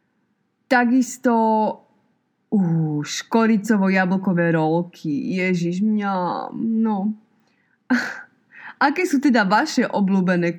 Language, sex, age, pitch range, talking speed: Slovak, female, 20-39, 175-225 Hz, 70 wpm